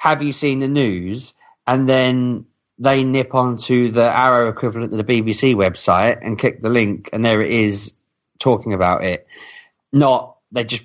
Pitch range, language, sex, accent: 100-125 Hz, English, male, British